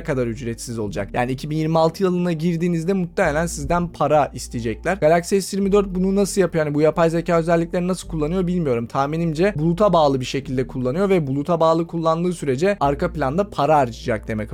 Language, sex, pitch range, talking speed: Turkish, male, 140-175 Hz, 165 wpm